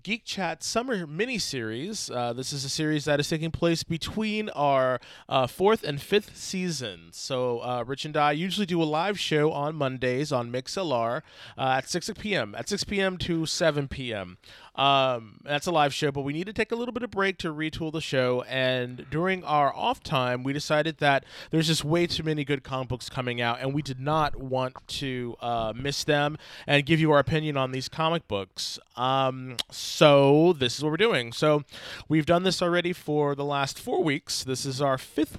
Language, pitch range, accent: English, 130-170 Hz, American